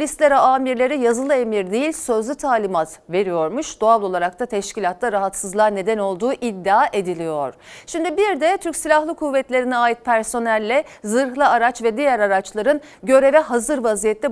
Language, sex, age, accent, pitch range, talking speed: Turkish, female, 40-59, native, 205-280 Hz, 140 wpm